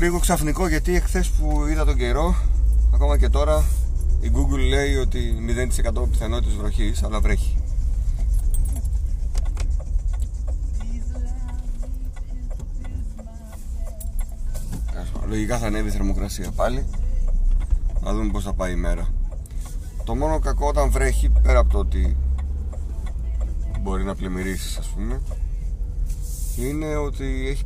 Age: 30-49